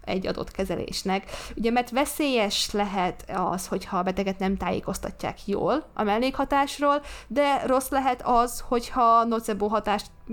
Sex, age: female, 20-39